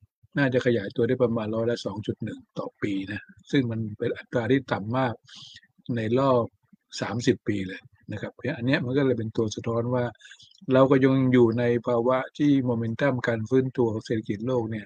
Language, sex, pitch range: Thai, male, 115-130 Hz